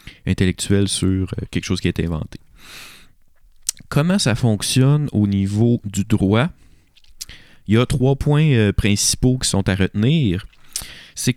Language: French